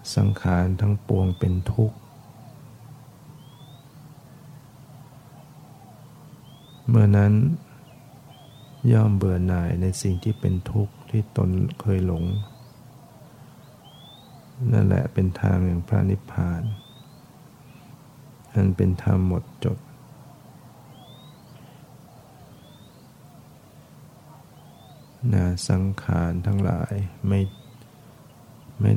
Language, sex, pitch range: Thai, male, 95-135 Hz